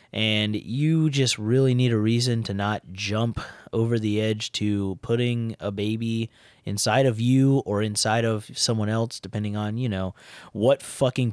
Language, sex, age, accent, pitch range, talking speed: English, male, 20-39, American, 105-135 Hz, 165 wpm